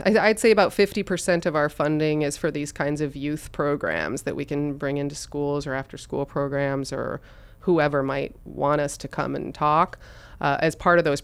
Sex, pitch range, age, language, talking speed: female, 140-170 Hz, 30-49, English, 205 wpm